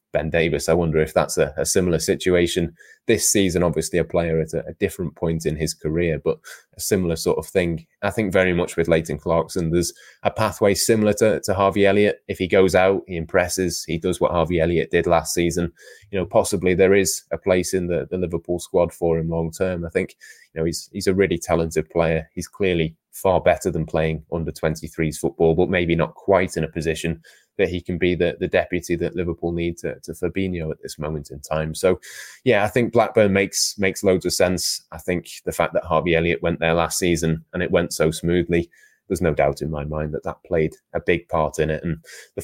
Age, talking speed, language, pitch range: 20-39, 225 wpm, English, 80-90 Hz